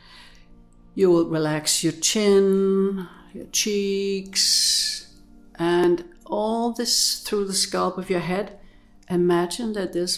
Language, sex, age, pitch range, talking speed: English, female, 60-79, 155-205 Hz, 110 wpm